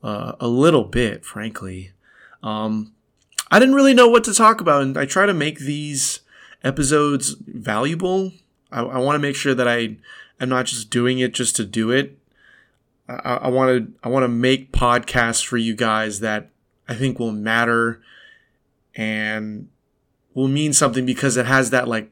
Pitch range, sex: 115-175 Hz, male